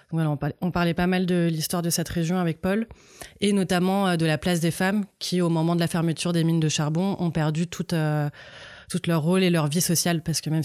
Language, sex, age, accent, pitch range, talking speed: French, female, 20-39, French, 155-175 Hz, 230 wpm